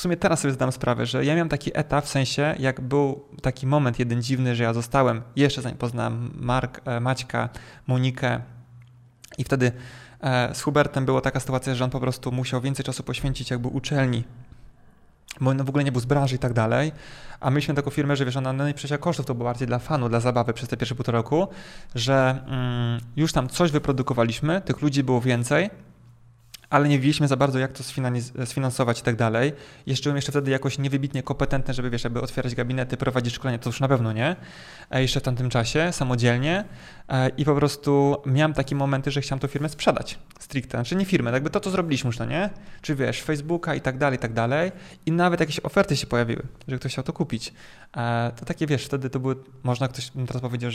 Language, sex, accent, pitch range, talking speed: Polish, male, native, 125-145 Hz, 205 wpm